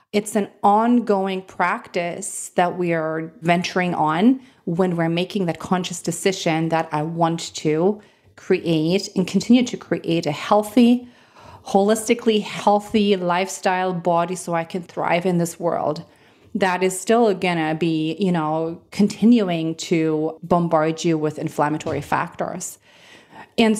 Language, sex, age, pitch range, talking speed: English, female, 30-49, 170-205 Hz, 135 wpm